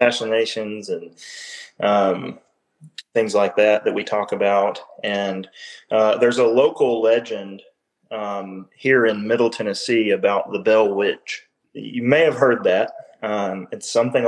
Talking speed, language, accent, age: 140 wpm, English, American, 20-39